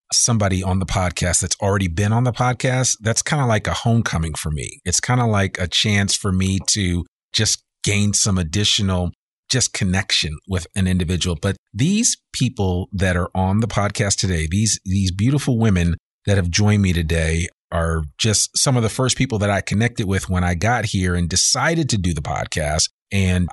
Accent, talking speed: American, 195 wpm